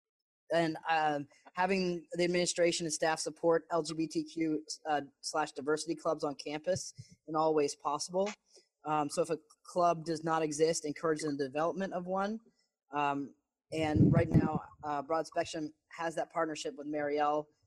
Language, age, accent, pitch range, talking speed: English, 20-39, American, 145-165 Hz, 150 wpm